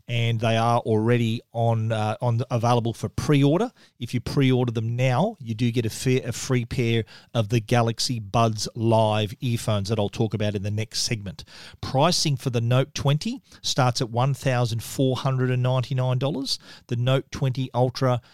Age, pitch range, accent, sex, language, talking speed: 40-59, 120-135 Hz, Australian, male, English, 185 wpm